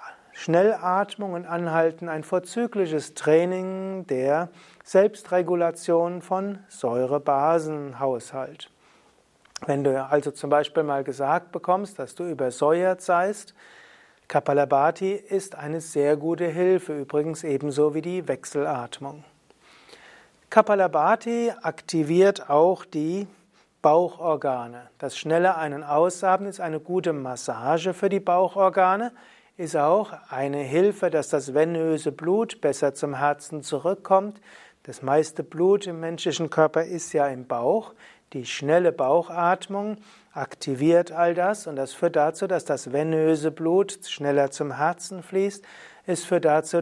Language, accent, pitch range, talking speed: German, German, 150-185 Hz, 120 wpm